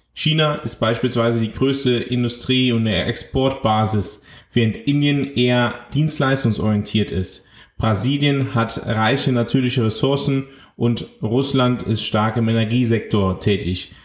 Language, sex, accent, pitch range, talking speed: German, male, German, 115-135 Hz, 105 wpm